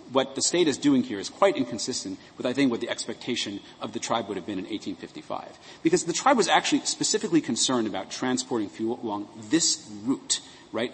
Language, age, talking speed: English, 40-59, 205 wpm